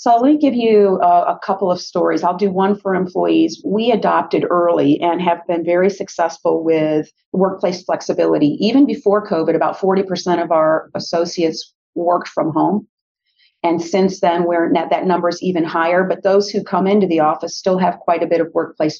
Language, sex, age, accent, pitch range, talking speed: English, female, 40-59, American, 170-205 Hz, 185 wpm